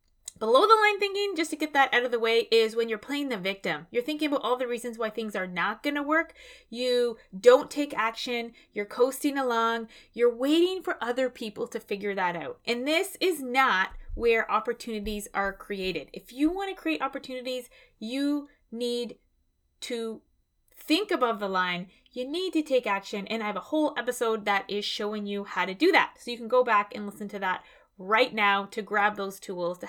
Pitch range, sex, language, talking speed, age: 210-270 Hz, female, English, 205 wpm, 20-39